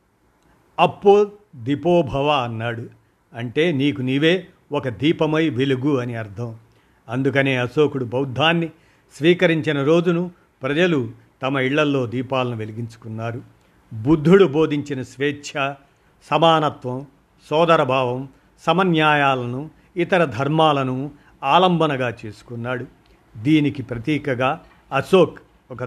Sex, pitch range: male, 130-155 Hz